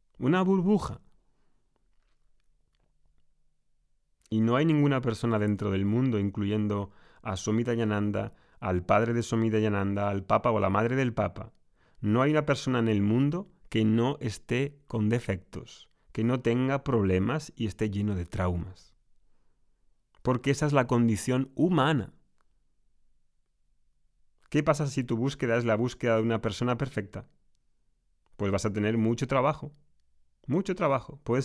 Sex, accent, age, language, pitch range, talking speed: male, Spanish, 30-49, Spanish, 105-140 Hz, 140 wpm